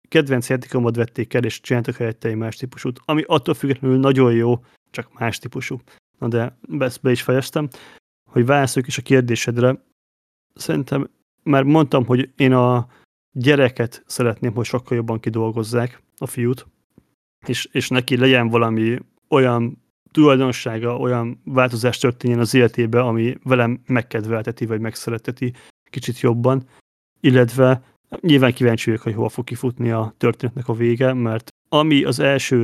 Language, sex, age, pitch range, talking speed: Hungarian, male, 30-49, 115-130 Hz, 145 wpm